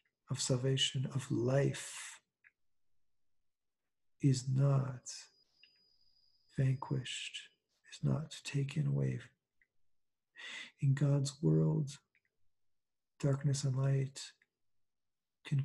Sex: male